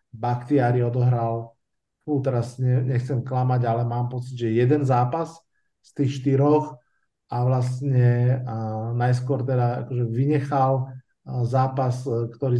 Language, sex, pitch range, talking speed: Slovak, male, 115-135 Hz, 110 wpm